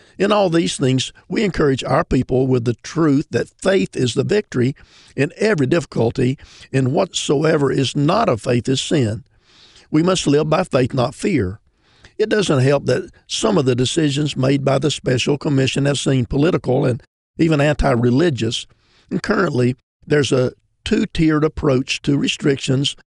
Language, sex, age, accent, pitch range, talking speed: English, male, 50-69, American, 125-150 Hz, 160 wpm